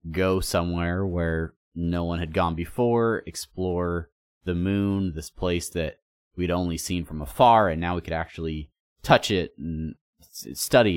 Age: 30-49